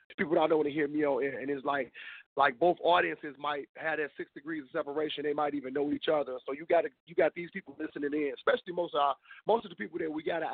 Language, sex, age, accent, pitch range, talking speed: English, male, 30-49, American, 145-185 Hz, 275 wpm